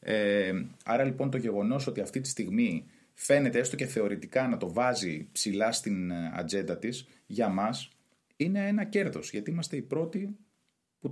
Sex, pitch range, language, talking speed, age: male, 90-140 Hz, Greek, 160 wpm, 30-49